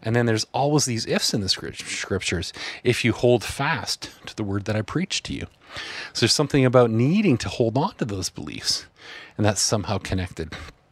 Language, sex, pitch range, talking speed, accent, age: English, male, 110-140 Hz, 200 wpm, American, 30-49